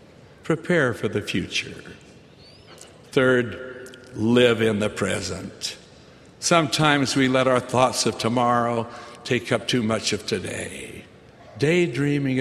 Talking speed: 110 wpm